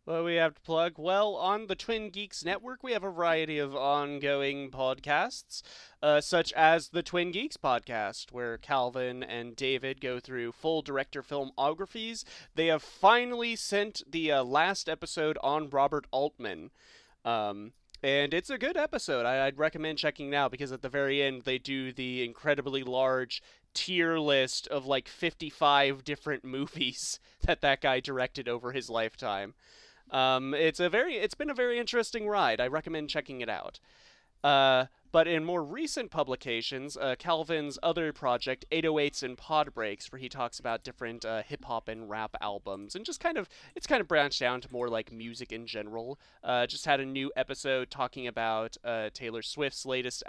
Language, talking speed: English, 175 wpm